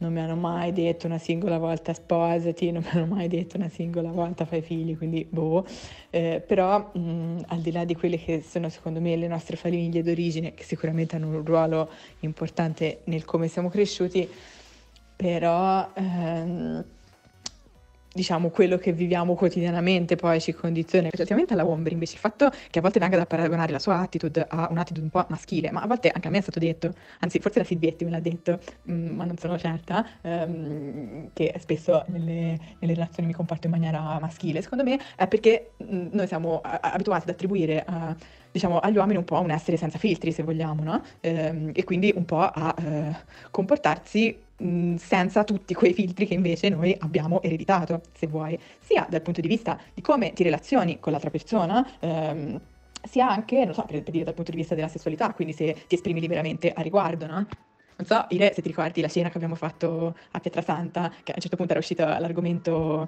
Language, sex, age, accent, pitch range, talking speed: Italian, female, 20-39, native, 165-180 Hz, 195 wpm